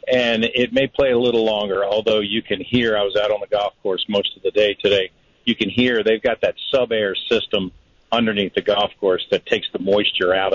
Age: 50-69